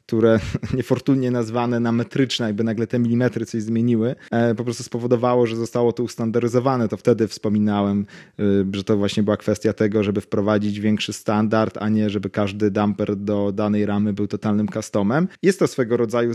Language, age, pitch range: Polish, 30-49, 105-125 Hz